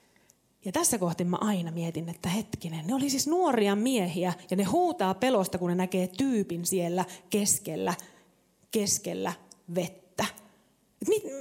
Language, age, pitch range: Finnish, 30-49, 190-245 Hz